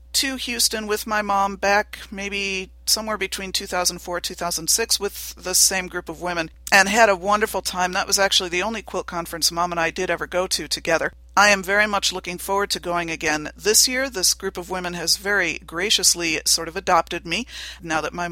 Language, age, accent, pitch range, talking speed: English, 50-69, American, 175-210 Hz, 205 wpm